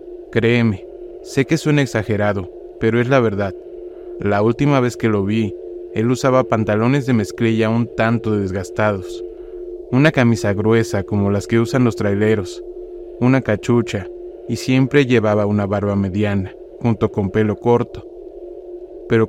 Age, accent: 30-49, Mexican